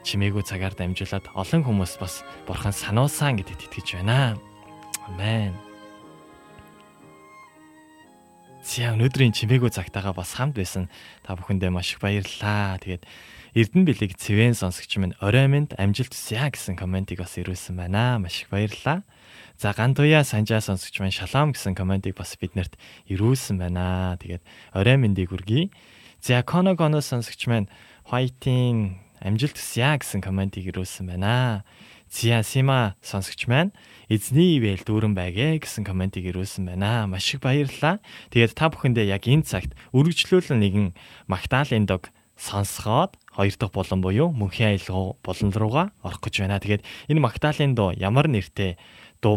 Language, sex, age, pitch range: Korean, male, 20-39, 95-125 Hz